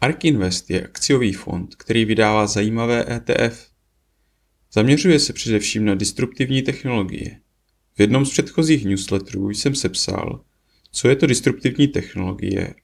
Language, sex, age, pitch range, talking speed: Czech, male, 30-49, 100-125 Hz, 125 wpm